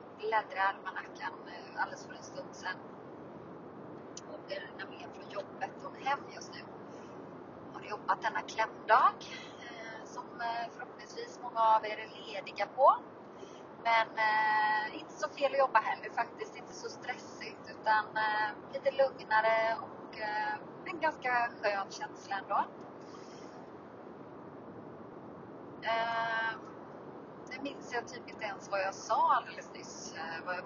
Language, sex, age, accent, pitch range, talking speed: Swedish, female, 30-49, native, 215-280 Hz, 135 wpm